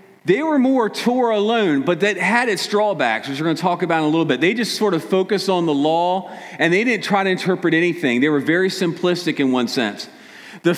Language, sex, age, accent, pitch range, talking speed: English, male, 40-59, American, 160-210 Hz, 240 wpm